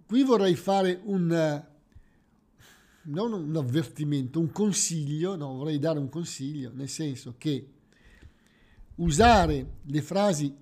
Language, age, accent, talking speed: Italian, 50-69, native, 115 wpm